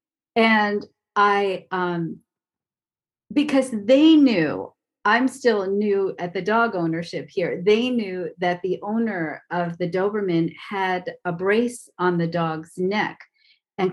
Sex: female